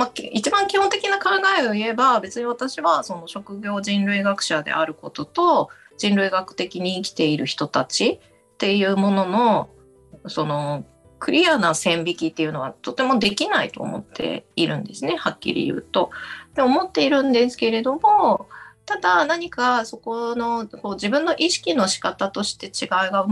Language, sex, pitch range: Japanese, female, 170-280 Hz